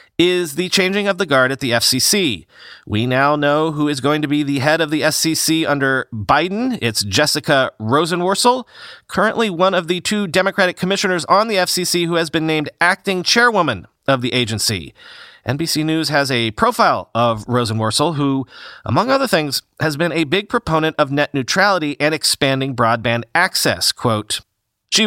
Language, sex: English, male